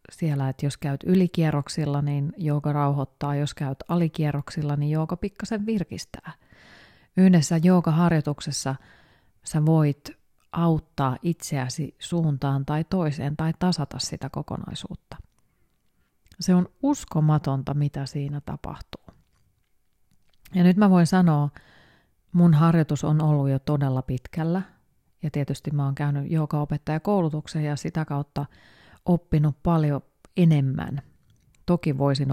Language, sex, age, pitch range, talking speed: Finnish, female, 30-49, 140-170 Hz, 110 wpm